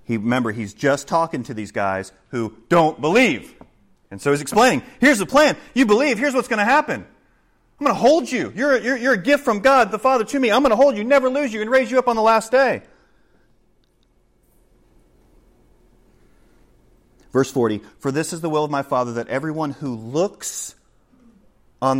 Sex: male